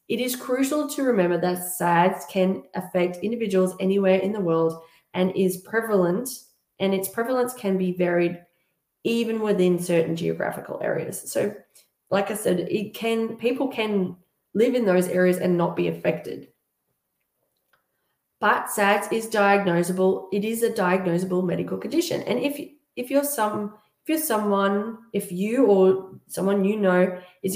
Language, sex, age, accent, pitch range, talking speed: English, female, 20-39, Australian, 180-220 Hz, 150 wpm